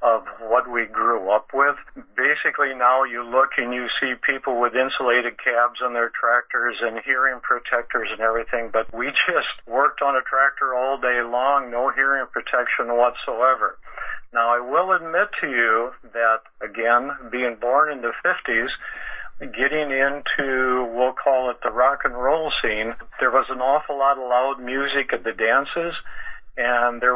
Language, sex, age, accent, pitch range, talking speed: English, male, 50-69, American, 120-140 Hz, 165 wpm